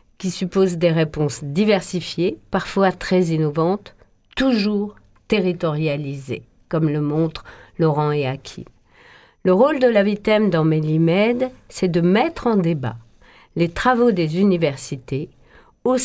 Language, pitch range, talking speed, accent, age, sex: French, 165-225 Hz, 125 wpm, French, 50-69, female